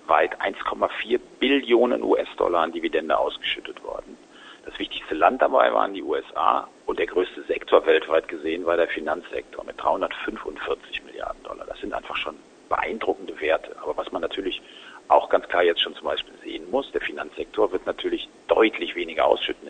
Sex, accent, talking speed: male, German, 165 wpm